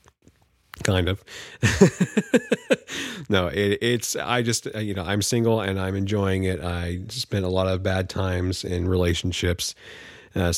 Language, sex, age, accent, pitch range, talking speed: English, male, 40-59, American, 95-120 Hz, 135 wpm